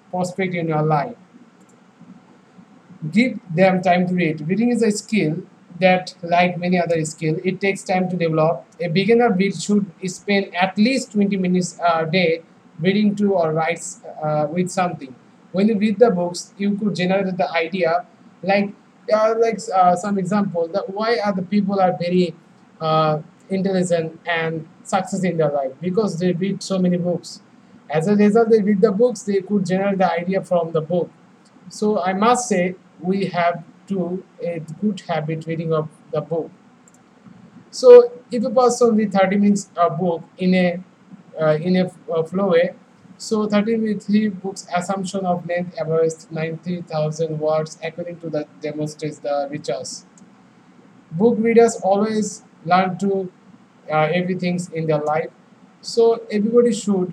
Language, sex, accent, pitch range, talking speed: English, male, Indian, 170-210 Hz, 160 wpm